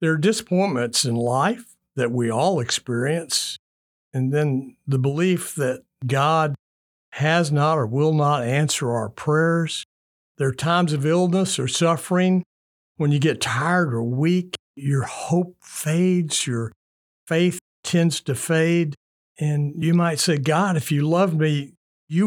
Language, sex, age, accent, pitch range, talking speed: English, male, 60-79, American, 125-170 Hz, 145 wpm